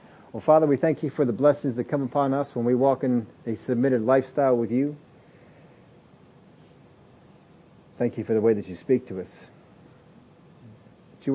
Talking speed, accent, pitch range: 170 wpm, American, 120-150 Hz